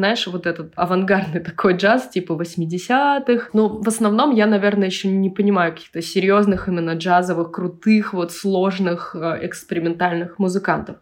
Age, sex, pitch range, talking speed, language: 20-39, female, 175-200 Hz, 135 wpm, Russian